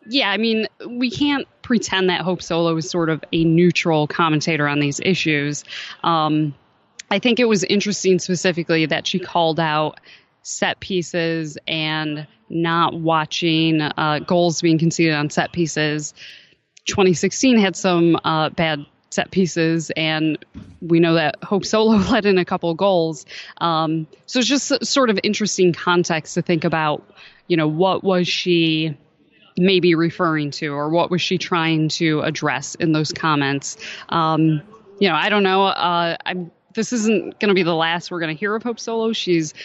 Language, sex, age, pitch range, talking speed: English, female, 20-39, 160-190 Hz, 170 wpm